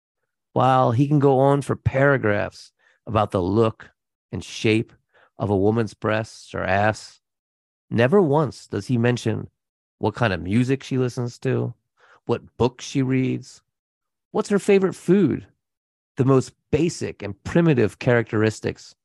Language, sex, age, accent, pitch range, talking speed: English, male, 30-49, American, 105-130 Hz, 140 wpm